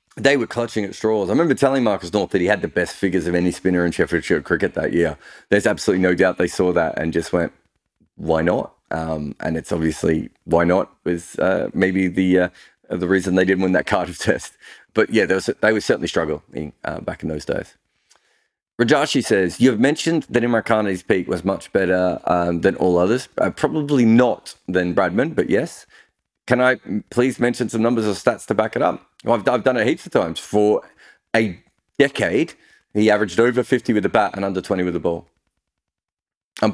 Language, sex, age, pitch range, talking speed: English, male, 30-49, 90-115 Hz, 205 wpm